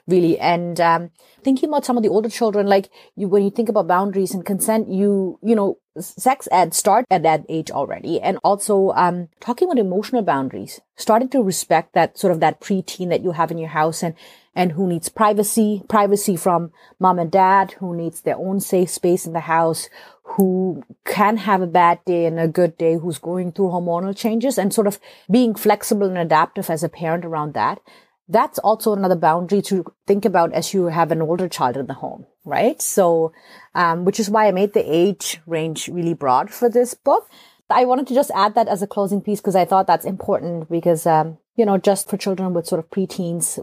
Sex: female